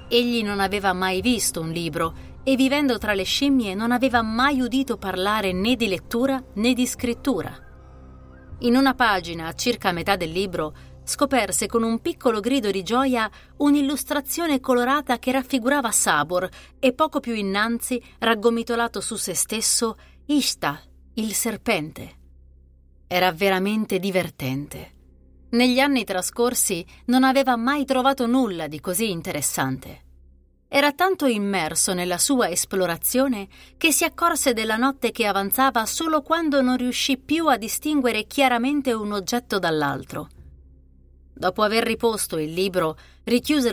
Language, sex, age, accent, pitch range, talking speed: Italian, female, 30-49, native, 180-255 Hz, 135 wpm